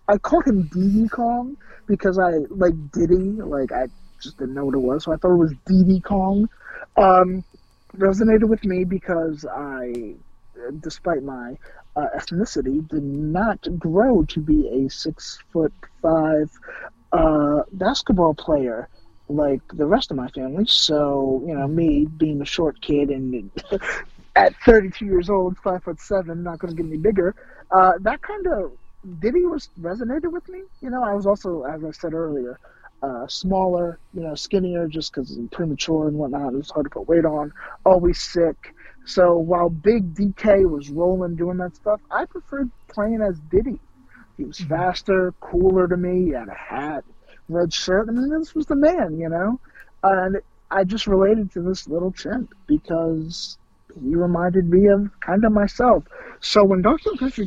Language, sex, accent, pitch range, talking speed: English, male, American, 160-205 Hz, 180 wpm